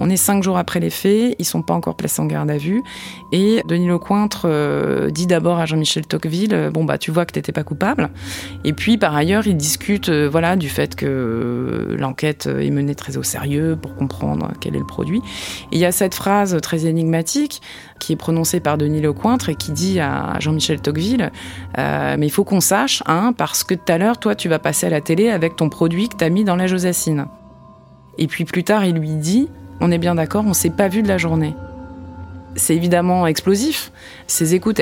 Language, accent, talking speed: French, French, 230 wpm